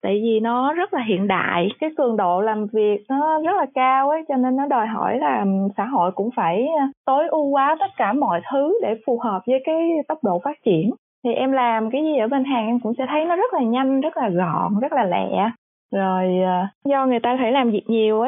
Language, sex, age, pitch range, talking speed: Vietnamese, female, 20-39, 200-270 Hz, 235 wpm